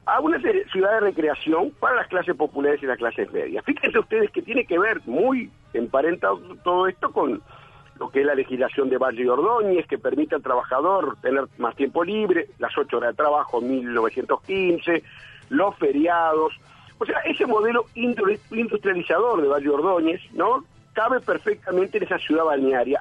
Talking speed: 170 wpm